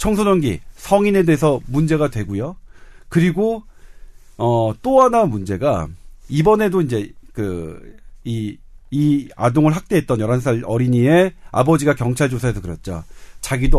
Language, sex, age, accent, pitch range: Korean, male, 40-59, native, 120-195 Hz